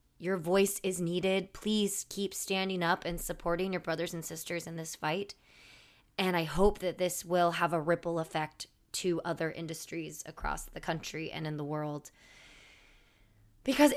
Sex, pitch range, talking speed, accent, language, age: female, 170-225 Hz, 165 wpm, American, English, 20-39